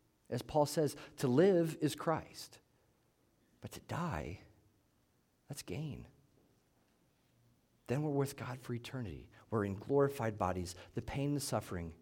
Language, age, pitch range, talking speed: English, 50-69, 110-135 Hz, 130 wpm